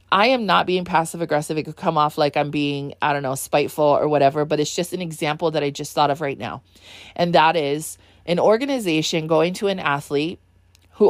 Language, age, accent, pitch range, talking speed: English, 30-49, American, 150-185 Hz, 220 wpm